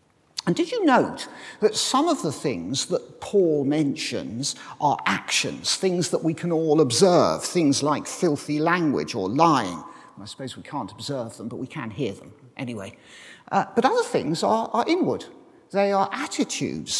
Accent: British